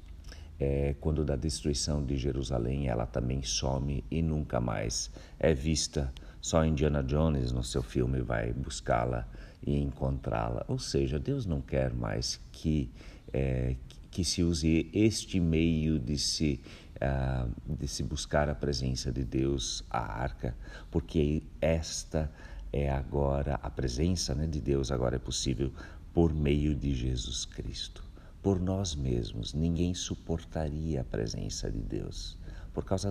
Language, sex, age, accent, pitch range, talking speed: Portuguese, male, 50-69, Brazilian, 70-85 Hz, 140 wpm